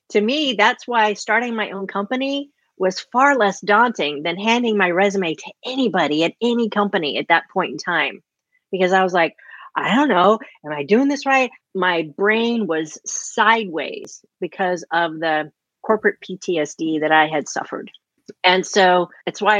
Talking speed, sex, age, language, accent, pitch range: 170 wpm, female, 40-59, English, American, 170-220 Hz